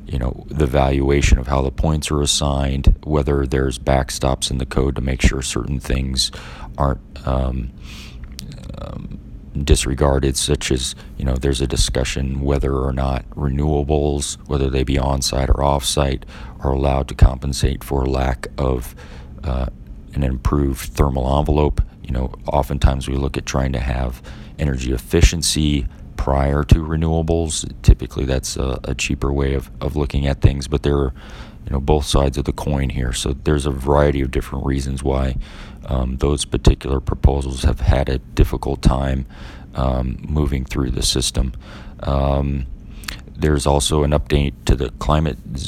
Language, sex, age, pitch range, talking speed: English, male, 30-49, 65-70 Hz, 155 wpm